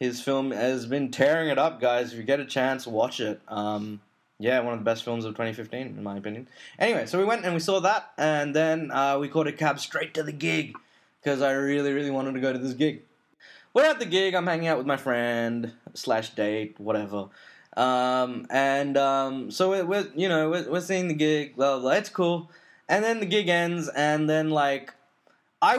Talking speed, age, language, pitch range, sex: 220 wpm, 20-39, English, 125-170 Hz, male